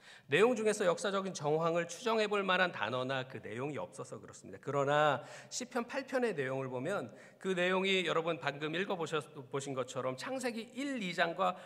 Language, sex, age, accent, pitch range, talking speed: English, male, 40-59, Korean, 145-230 Hz, 140 wpm